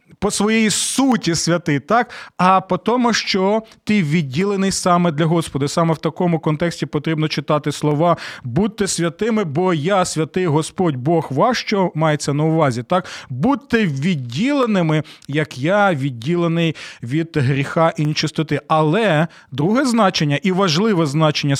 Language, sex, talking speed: Ukrainian, male, 135 wpm